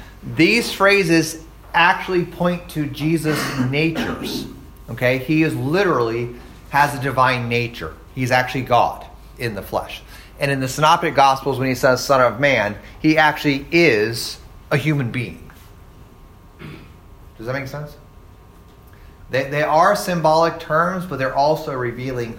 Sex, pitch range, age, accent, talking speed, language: male, 115-160 Hz, 30-49, American, 135 wpm, English